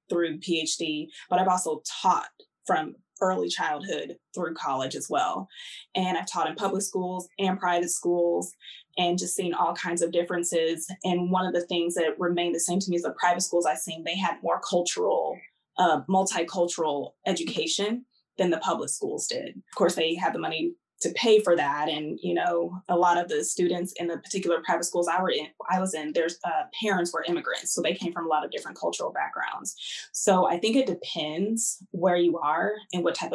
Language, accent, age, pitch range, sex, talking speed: English, American, 20-39, 165-190 Hz, female, 205 wpm